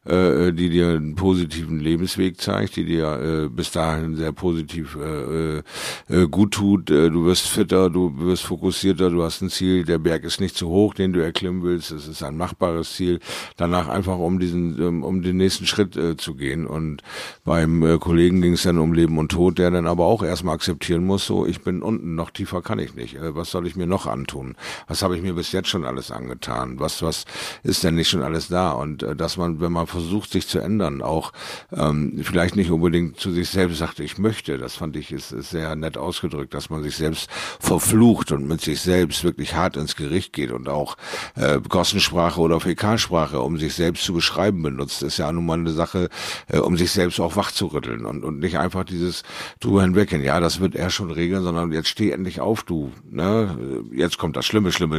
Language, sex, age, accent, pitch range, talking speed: German, male, 50-69, German, 80-95 Hz, 215 wpm